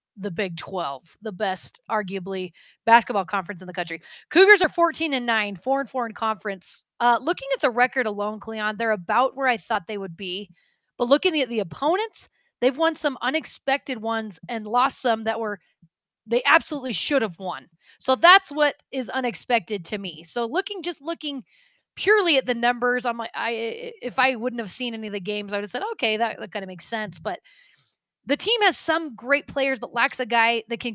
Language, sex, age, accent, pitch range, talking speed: English, female, 30-49, American, 205-275 Hz, 205 wpm